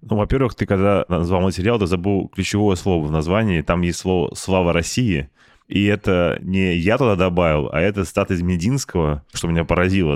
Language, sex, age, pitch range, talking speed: Russian, male, 20-39, 85-100 Hz, 185 wpm